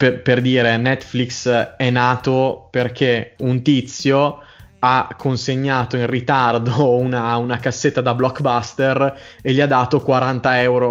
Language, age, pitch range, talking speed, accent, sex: Italian, 20-39, 120-140 Hz, 130 wpm, native, male